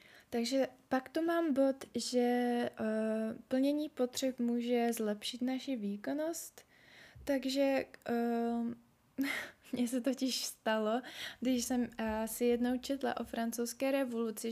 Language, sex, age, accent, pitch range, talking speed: Czech, female, 20-39, native, 220-255 Hz, 105 wpm